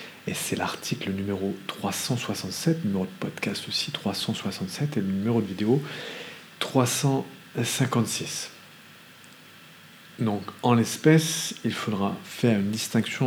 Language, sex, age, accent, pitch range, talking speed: English, male, 40-59, French, 100-130 Hz, 115 wpm